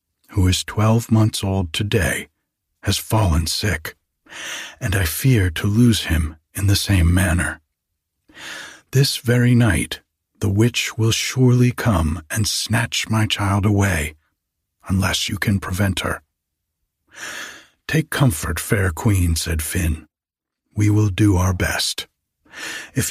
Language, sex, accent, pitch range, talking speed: English, male, American, 80-120 Hz, 125 wpm